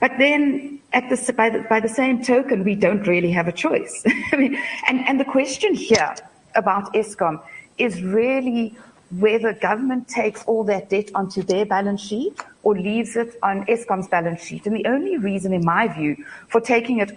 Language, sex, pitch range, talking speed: English, female, 195-260 Hz, 170 wpm